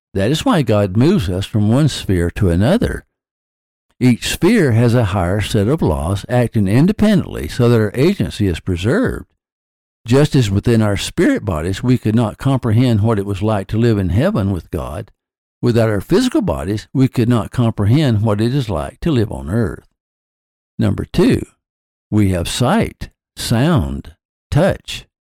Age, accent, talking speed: 60-79, American, 165 wpm